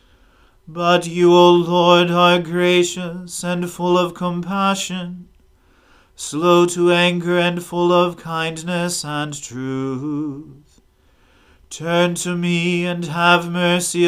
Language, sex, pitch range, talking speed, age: English, male, 150-175 Hz, 105 wpm, 40-59